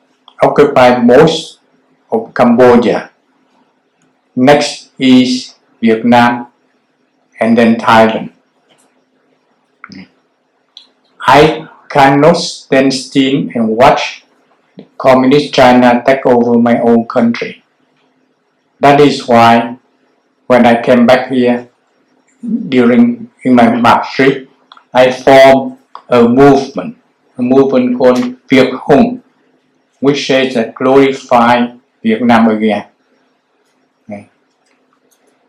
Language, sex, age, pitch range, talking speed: English, male, 60-79, 120-145 Hz, 85 wpm